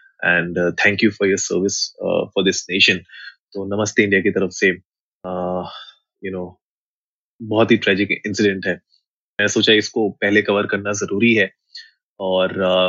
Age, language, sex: 20-39, Hindi, male